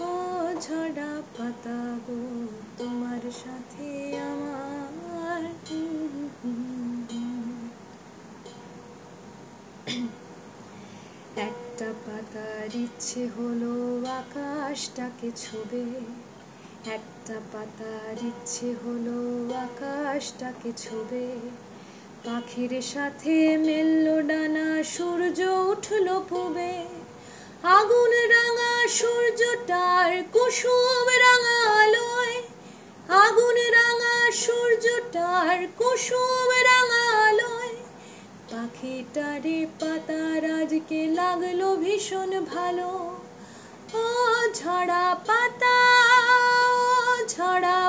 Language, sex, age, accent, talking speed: Hindi, female, 20-39, native, 35 wpm